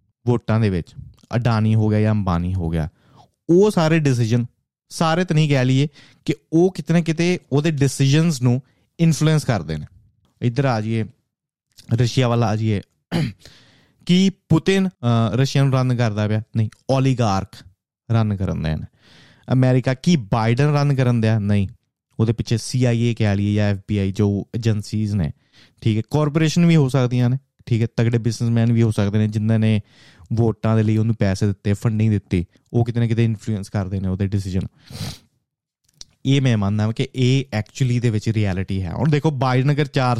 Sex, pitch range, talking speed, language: male, 105-135 Hz, 165 wpm, Punjabi